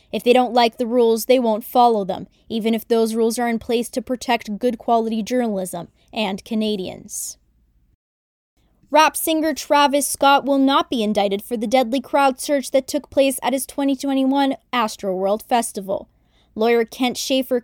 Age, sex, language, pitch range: 20-39, female, English, 215-260 Hz